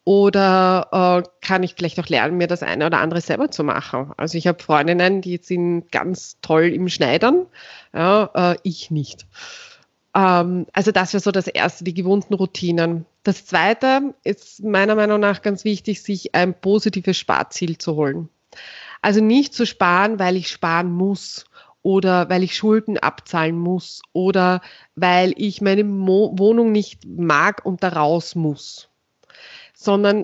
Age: 30-49